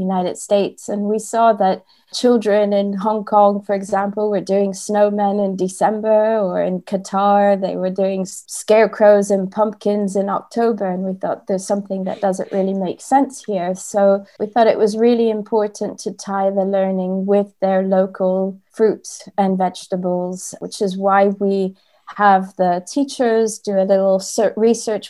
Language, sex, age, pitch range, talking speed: English, female, 20-39, 190-210 Hz, 160 wpm